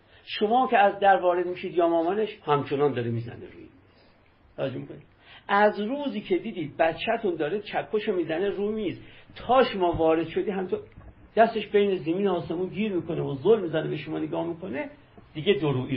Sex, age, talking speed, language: male, 50-69, 165 wpm, Persian